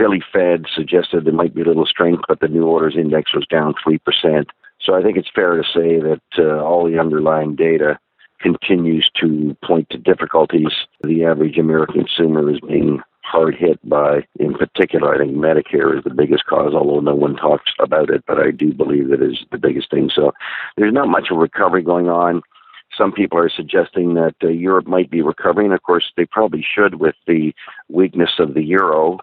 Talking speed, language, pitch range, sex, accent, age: 200 wpm, English, 80-90 Hz, male, American, 50-69